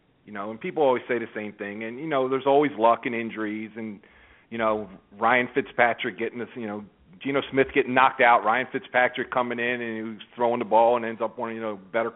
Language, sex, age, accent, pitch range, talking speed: English, male, 40-59, American, 115-150 Hz, 235 wpm